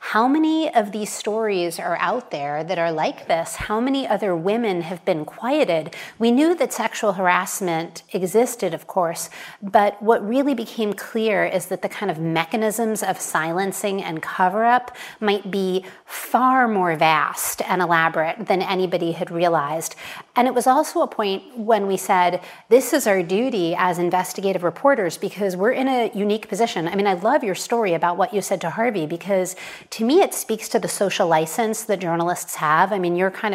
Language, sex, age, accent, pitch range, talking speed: English, female, 30-49, American, 175-225 Hz, 185 wpm